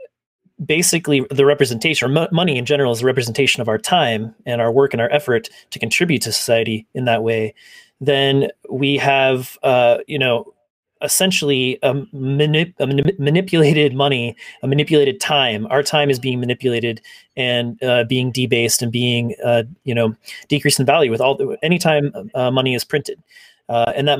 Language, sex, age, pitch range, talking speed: English, male, 30-49, 120-145 Hz, 170 wpm